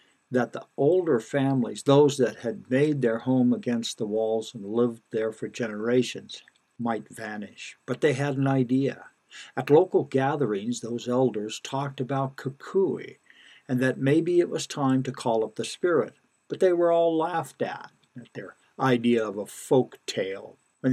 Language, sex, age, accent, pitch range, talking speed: English, male, 60-79, American, 115-140 Hz, 165 wpm